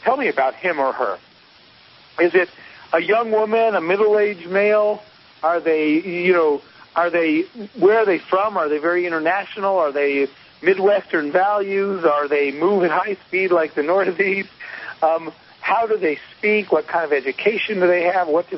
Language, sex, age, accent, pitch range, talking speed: English, male, 50-69, American, 160-220 Hz, 175 wpm